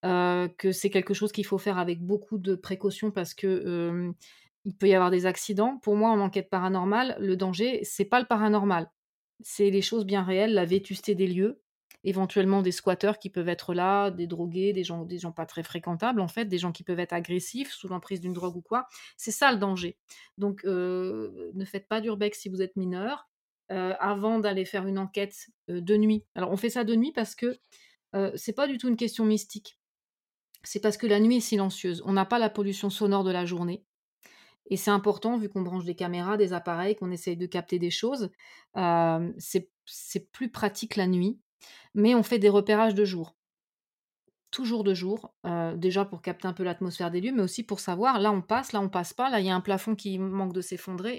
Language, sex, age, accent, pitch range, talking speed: French, female, 30-49, French, 180-210 Hz, 220 wpm